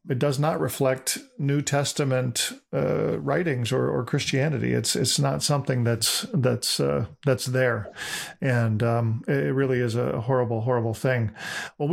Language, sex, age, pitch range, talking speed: English, male, 40-59, 125-140 Hz, 150 wpm